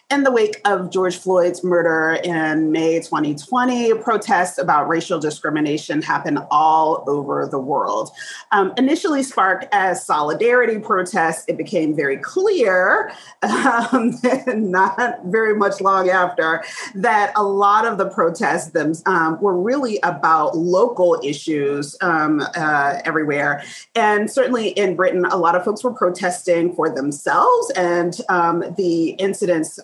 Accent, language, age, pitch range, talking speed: American, English, 30-49, 165-225 Hz, 135 wpm